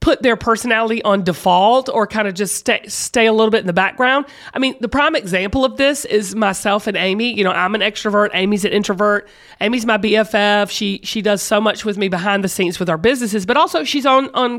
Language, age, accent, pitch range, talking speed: English, 40-59, American, 190-245 Hz, 235 wpm